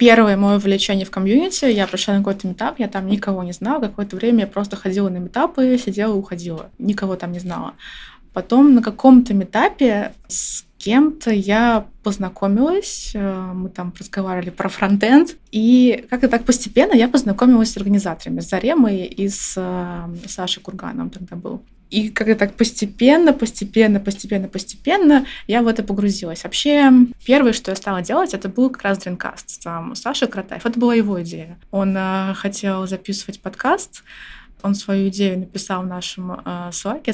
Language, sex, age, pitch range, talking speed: Russian, female, 20-39, 190-240 Hz, 160 wpm